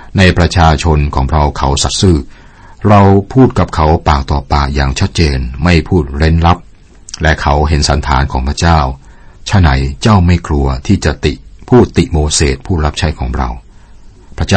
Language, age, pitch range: Thai, 60-79, 70-90 Hz